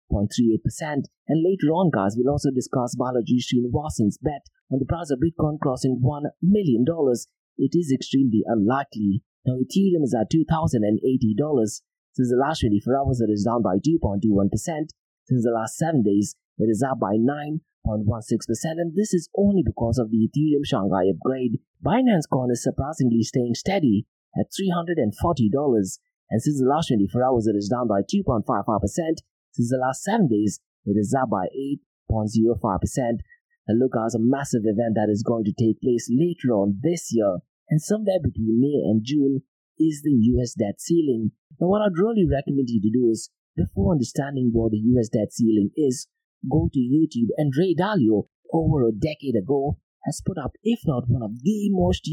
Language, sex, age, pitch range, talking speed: English, male, 30-49, 115-155 Hz, 175 wpm